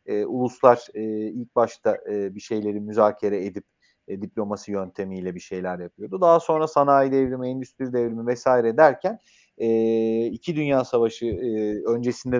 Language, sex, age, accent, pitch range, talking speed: Turkish, male, 40-59, native, 105-140 Hz, 145 wpm